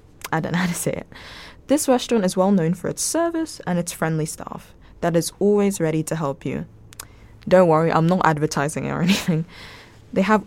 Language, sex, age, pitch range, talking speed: English, female, 10-29, 150-190 Hz, 205 wpm